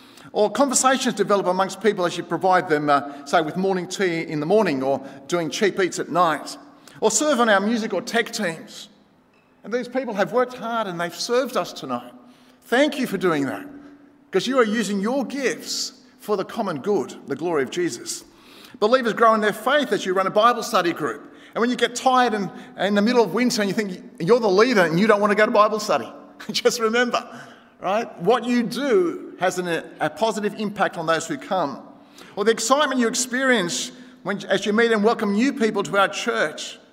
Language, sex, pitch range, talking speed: English, male, 185-250 Hz, 215 wpm